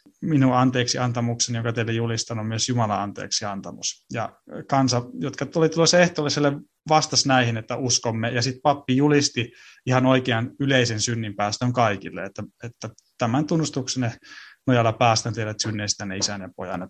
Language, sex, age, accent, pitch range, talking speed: Finnish, male, 30-49, native, 115-135 Hz, 140 wpm